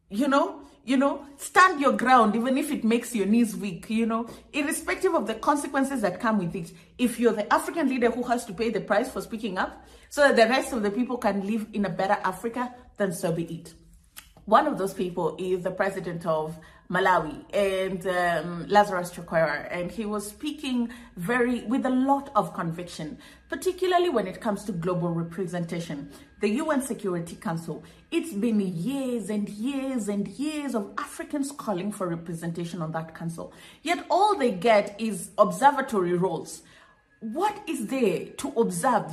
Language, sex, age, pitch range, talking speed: English, female, 30-49, 195-275 Hz, 180 wpm